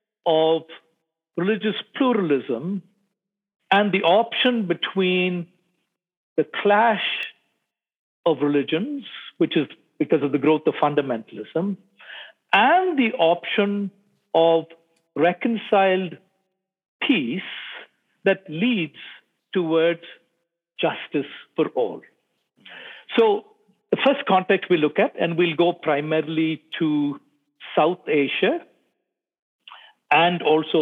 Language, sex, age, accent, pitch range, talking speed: English, male, 50-69, Indian, 160-215 Hz, 90 wpm